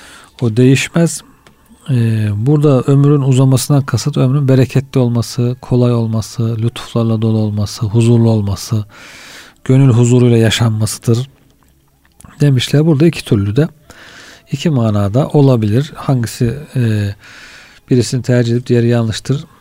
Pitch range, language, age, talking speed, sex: 110-135 Hz, Turkish, 40-59, 105 wpm, male